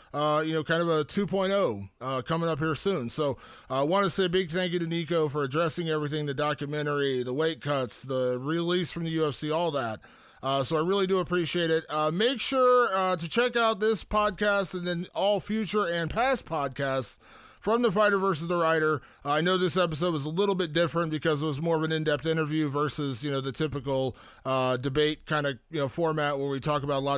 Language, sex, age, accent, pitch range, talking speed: English, male, 30-49, American, 140-190 Hz, 225 wpm